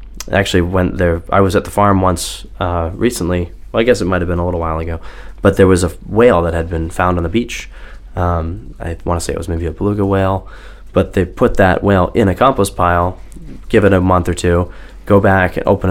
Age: 20-39